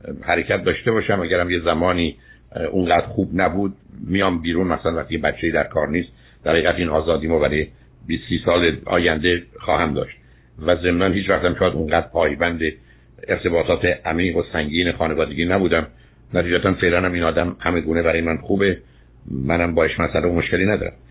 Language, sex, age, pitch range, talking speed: Persian, male, 60-79, 80-95 Hz, 150 wpm